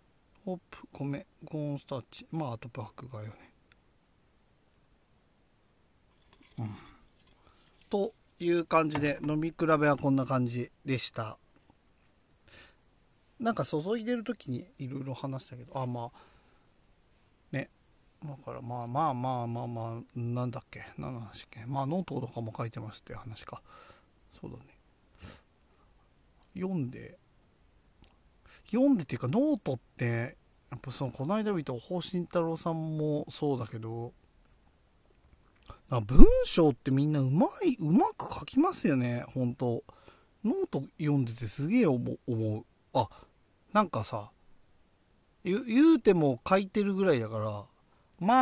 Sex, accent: male, native